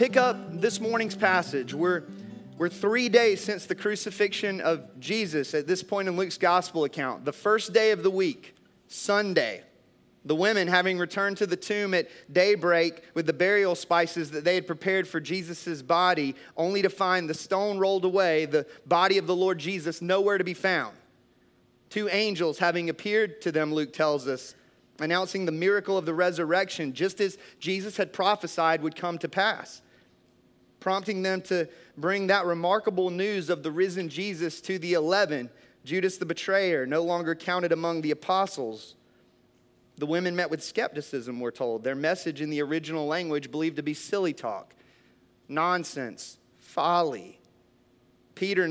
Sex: male